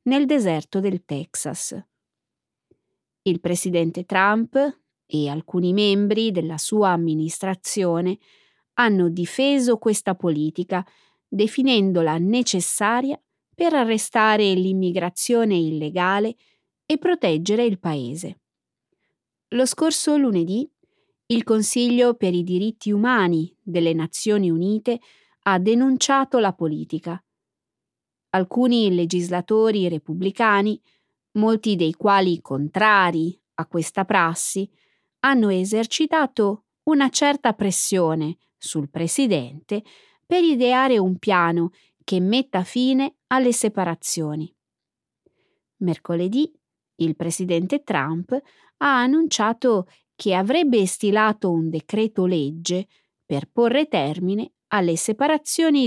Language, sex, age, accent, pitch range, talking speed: Italian, female, 30-49, native, 175-240 Hz, 90 wpm